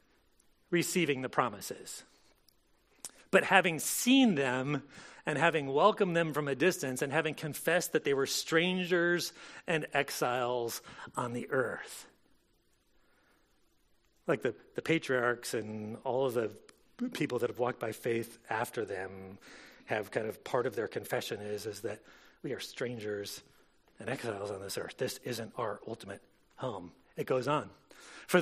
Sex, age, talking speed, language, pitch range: male, 40-59, 145 wpm, English, 140-205 Hz